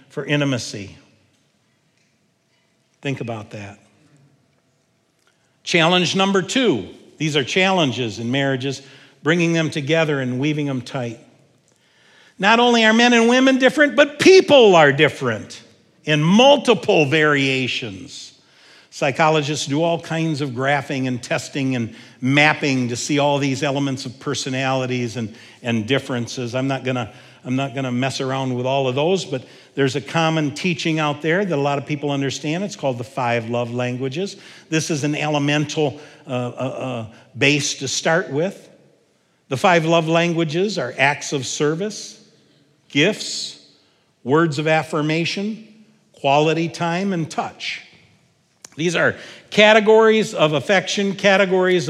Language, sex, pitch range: English, male, 130-170 Hz